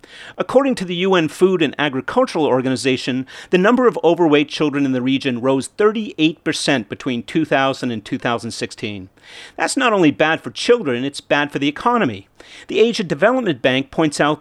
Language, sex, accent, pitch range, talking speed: English, male, American, 130-185 Hz, 160 wpm